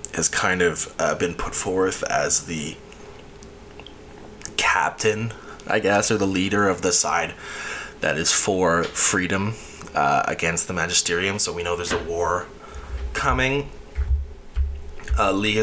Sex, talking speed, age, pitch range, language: male, 130 wpm, 20-39, 75-105 Hz, English